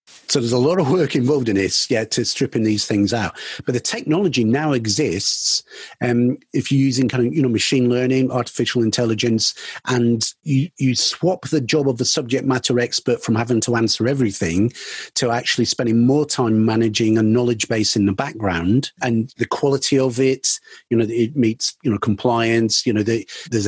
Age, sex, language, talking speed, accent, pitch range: 40-59, male, German, 195 wpm, British, 110-130 Hz